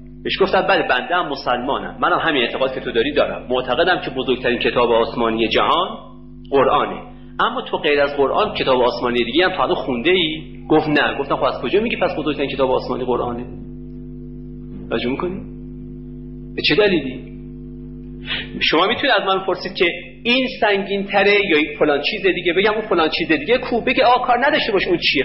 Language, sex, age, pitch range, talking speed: Persian, male, 40-59, 125-205 Hz, 175 wpm